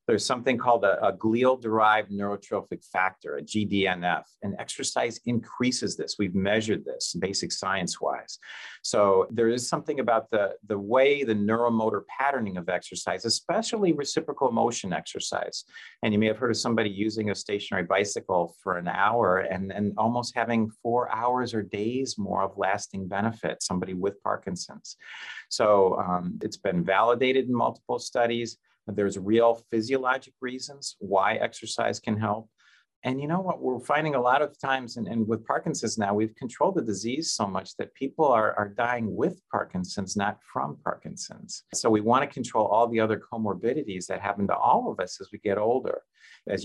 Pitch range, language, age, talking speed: 100-120 Hz, English, 40-59, 170 wpm